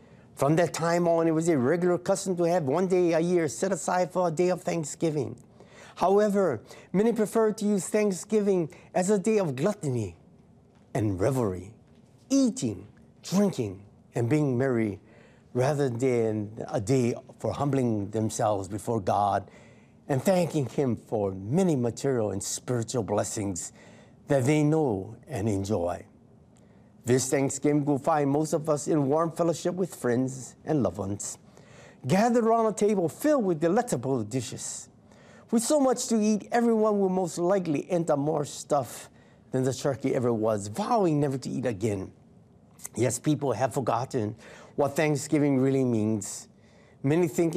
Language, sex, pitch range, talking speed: English, male, 115-175 Hz, 150 wpm